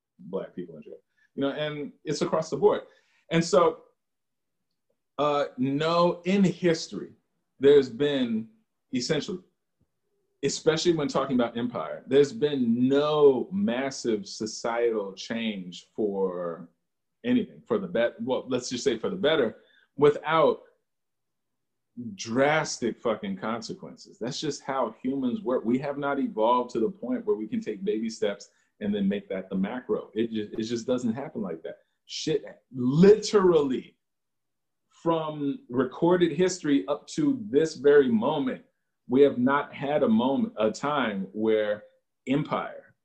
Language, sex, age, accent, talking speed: English, male, 40-59, American, 140 wpm